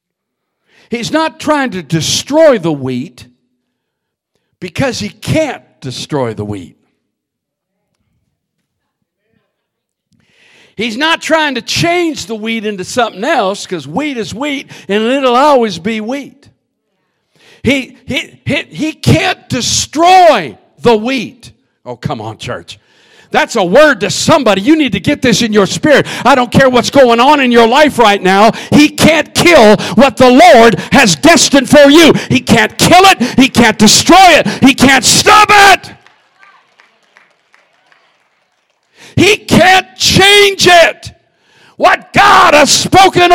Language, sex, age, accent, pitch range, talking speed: English, male, 50-69, American, 225-360 Hz, 135 wpm